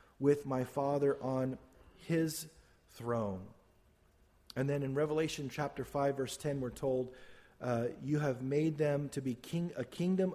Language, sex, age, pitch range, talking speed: English, male, 40-59, 130-170 Hz, 150 wpm